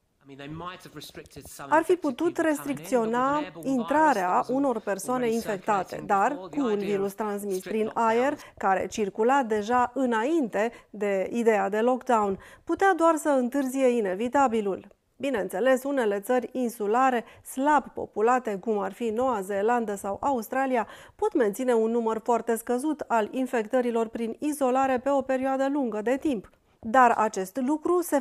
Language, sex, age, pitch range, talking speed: Romanian, female, 30-49, 215-280 Hz, 130 wpm